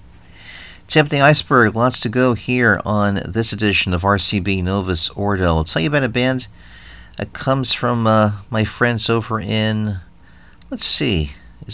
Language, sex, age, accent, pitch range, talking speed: English, male, 40-59, American, 85-115 Hz, 160 wpm